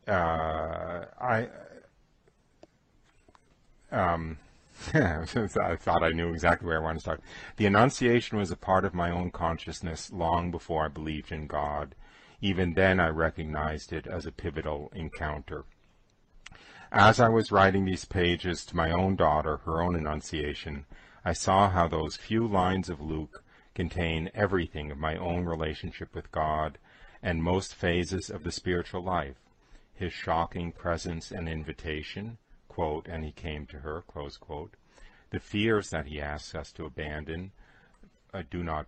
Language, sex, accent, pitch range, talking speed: English, male, American, 75-95 Hz, 150 wpm